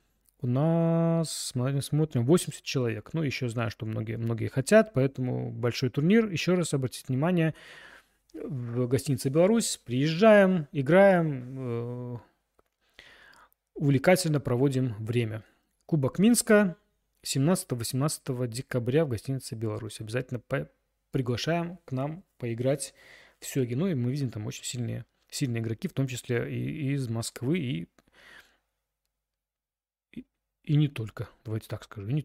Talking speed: 125 wpm